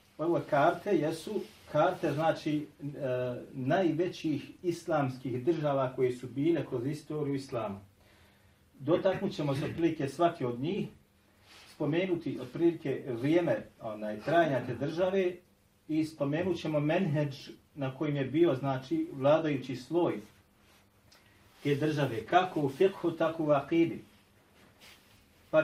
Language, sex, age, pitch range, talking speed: English, male, 40-59, 115-170 Hz, 115 wpm